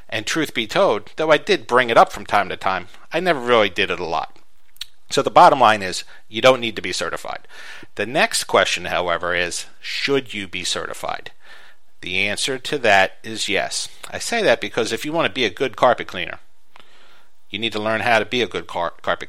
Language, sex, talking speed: English, male, 220 wpm